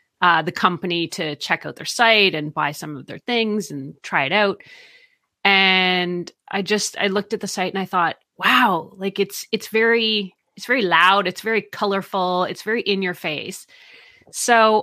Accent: American